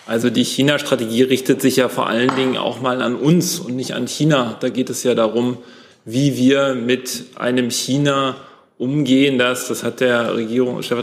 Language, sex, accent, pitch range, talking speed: German, male, German, 120-130 Hz, 180 wpm